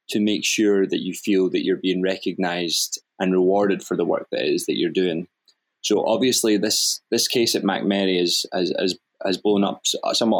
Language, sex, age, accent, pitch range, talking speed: English, male, 20-39, British, 90-100 Hz, 210 wpm